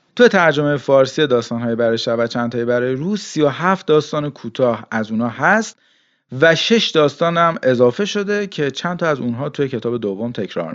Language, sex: Persian, male